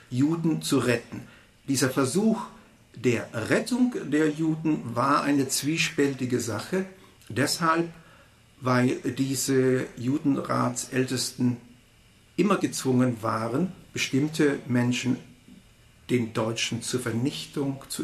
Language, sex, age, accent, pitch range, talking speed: German, male, 60-79, German, 120-145 Hz, 90 wpm